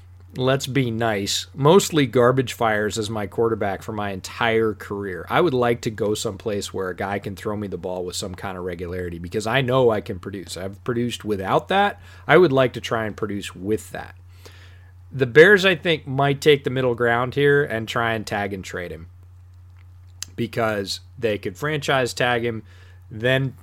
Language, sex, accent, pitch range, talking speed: English, male, American, 95-135 Hz, 190 wpm